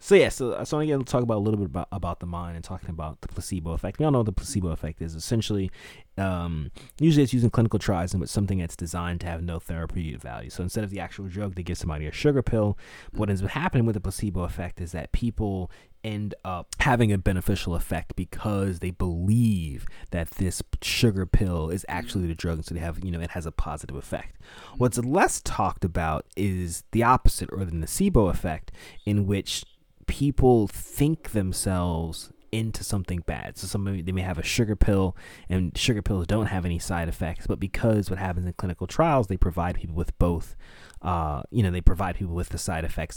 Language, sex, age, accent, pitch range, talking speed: English, male, 30-49, American, 85-105 Hz, 215 wpm